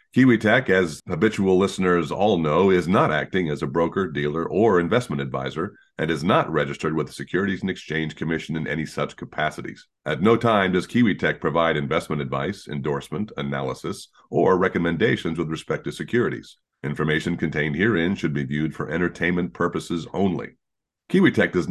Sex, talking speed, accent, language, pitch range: male, 160 wpm, American, English, 75-95 Hz